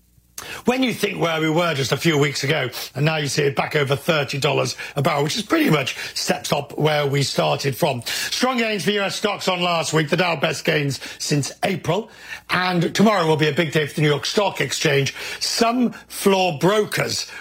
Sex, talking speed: male, 210 wpm